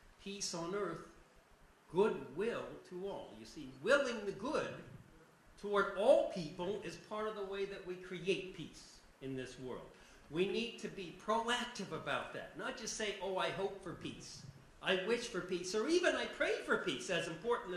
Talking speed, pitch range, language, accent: 180 wpm, 160-215 Hz, English, American